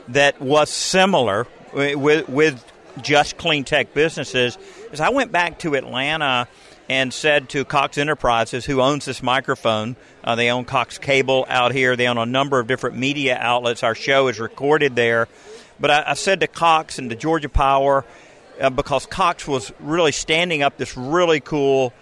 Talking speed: 175 wpm